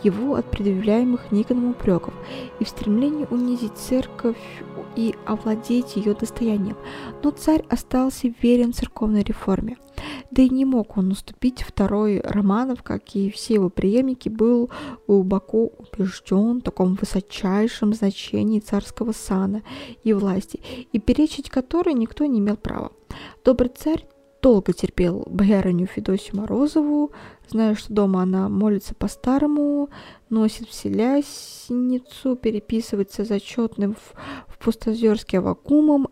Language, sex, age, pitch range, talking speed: Russian, female, 20-39, 200-255 Hz, 120 wpm